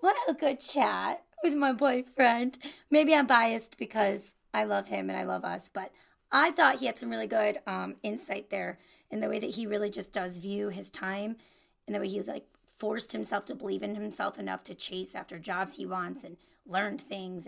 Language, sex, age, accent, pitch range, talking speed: English, female, 30-49, American, 185-290 Hz, 210 wpm